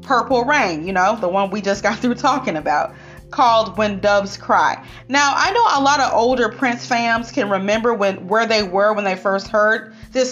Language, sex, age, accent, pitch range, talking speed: English, female, 30-49, American, 195-255 Hz, 210 wpm